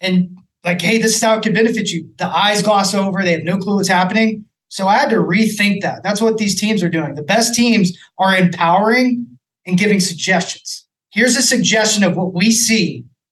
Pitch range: 180-220 Hz